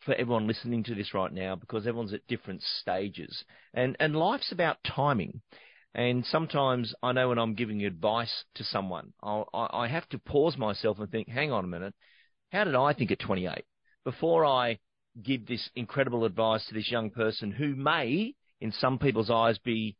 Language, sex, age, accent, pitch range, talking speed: English, male, 40-59, Australian, 105-135 Hz, 185 wpm